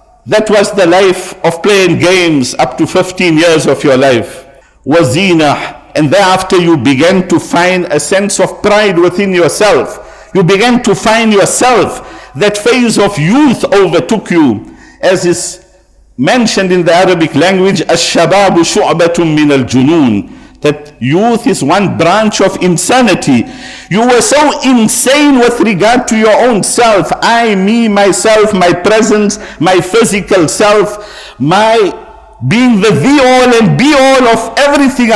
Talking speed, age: 145 wpm, 50-69